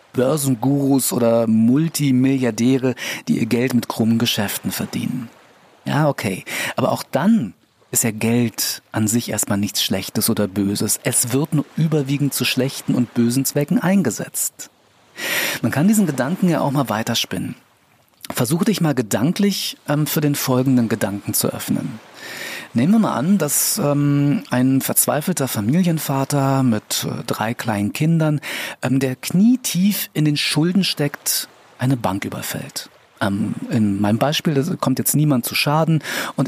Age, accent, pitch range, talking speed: 40-59, German, 115-150 Hz, 145 wpm